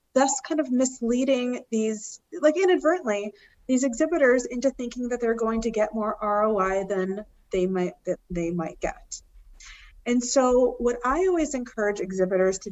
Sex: female